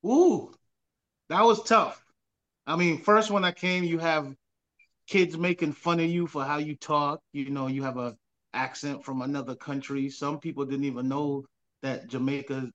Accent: American